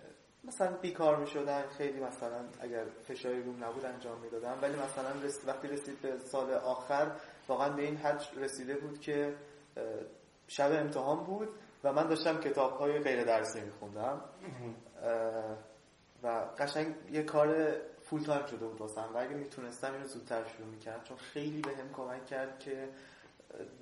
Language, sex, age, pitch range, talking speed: Persian, male, 20-39, 120-150 Hz, 160 wpm